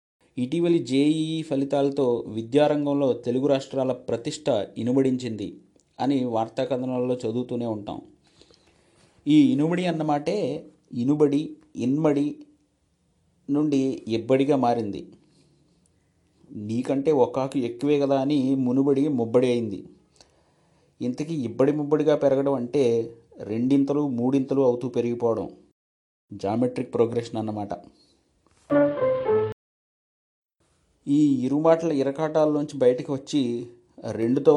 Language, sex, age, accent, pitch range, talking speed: Telugu, male, 30-49, native, 120-150 Hz, 85 wpm